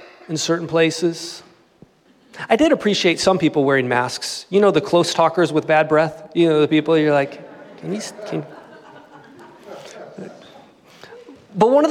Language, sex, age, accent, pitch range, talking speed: English, male, 30-49, American, 170-260 Hz, 155 wpm